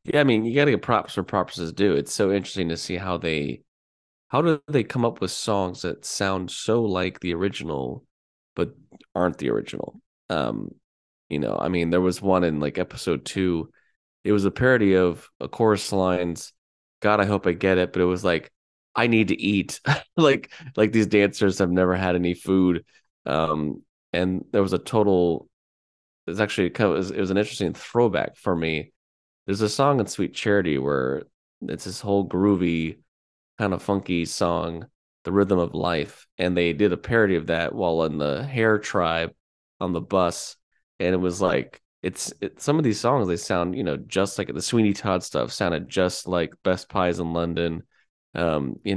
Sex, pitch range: male, 85-105 Hz